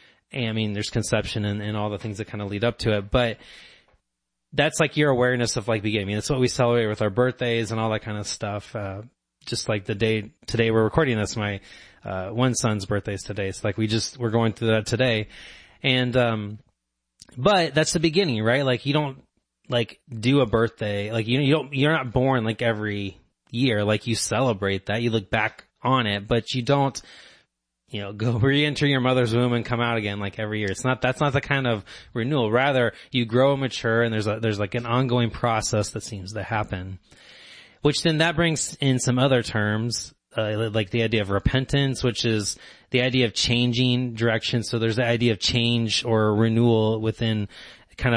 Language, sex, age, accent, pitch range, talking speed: English, male, 20-39, American, 105-125 Hz, 210 wpm